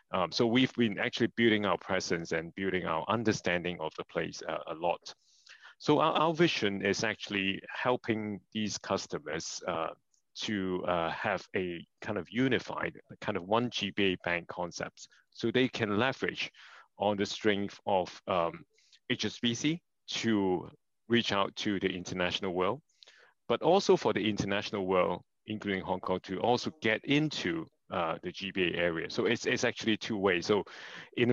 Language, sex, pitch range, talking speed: English, male, 95-115 Hz, 160 wpm